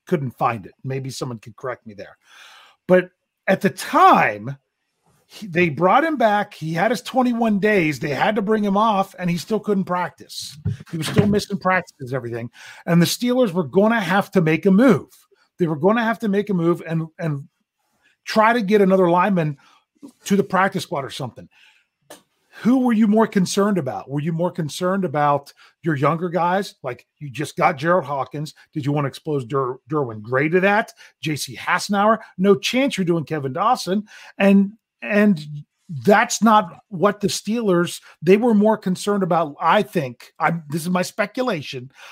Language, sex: English, male